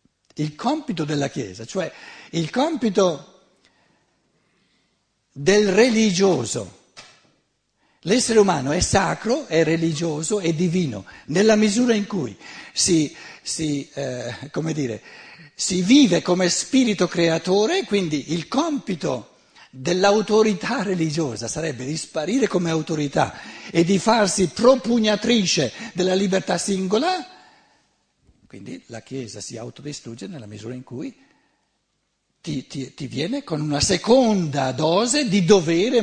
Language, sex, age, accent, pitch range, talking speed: Italian, male, 60-79, native, 130-200 Hz, 105 wpm